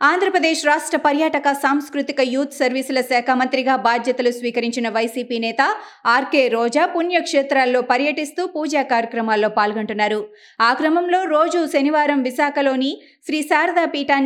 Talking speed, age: 110 wpm, 30-49